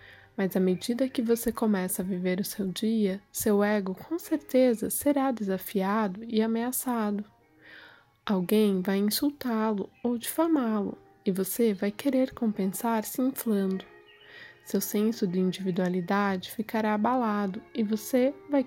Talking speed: 130 wpm